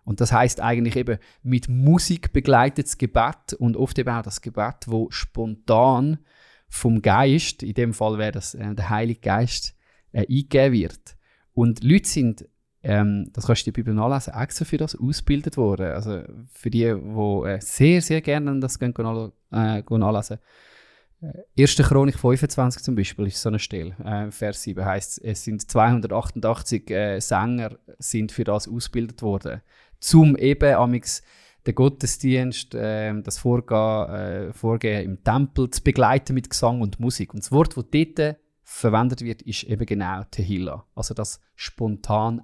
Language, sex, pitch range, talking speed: German, male, 105-135 Hz, 160 wpm